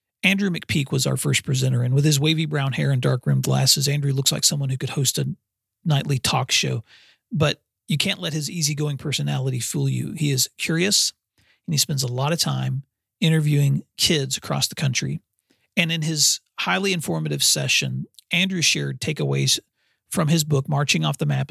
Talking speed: 185 wpm